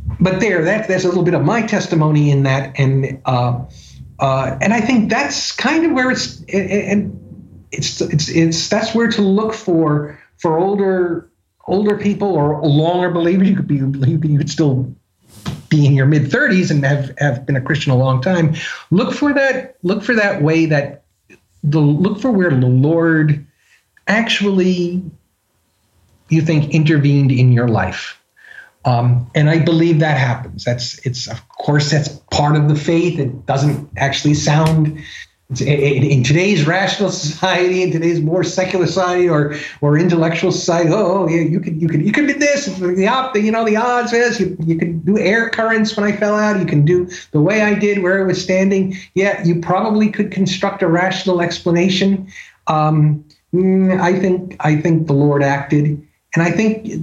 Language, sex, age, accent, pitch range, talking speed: English, male, 50-69, American, 145-190 Hz, 180 wpm